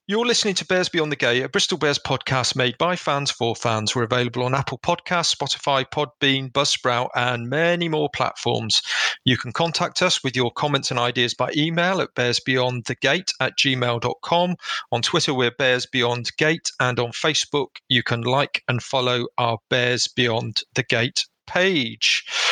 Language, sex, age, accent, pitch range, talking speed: English, male, 40-59, British, 130-160 Hz, 170 wpm